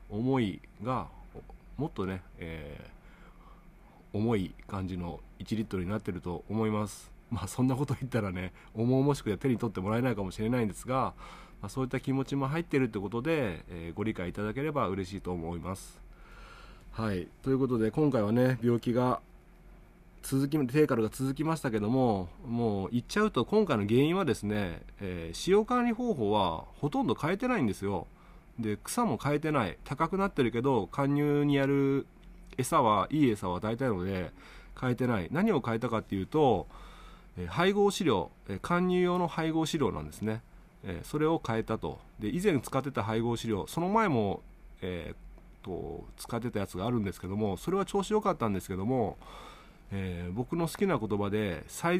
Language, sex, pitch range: Japanese, male, 100-150 Hz